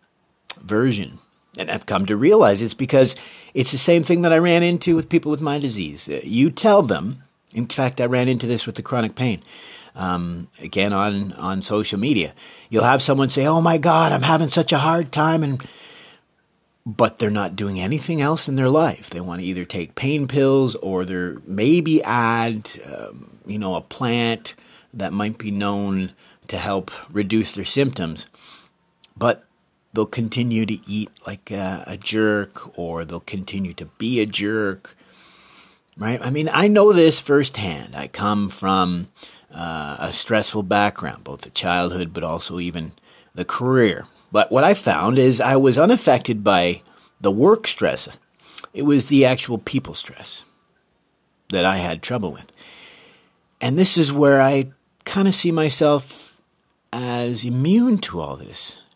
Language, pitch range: English, 95-140 Hz